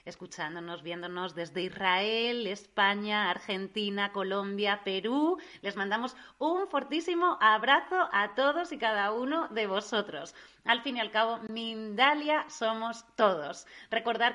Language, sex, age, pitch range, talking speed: Spanish, female, 30-49, 185-230 Hz, 120 wpm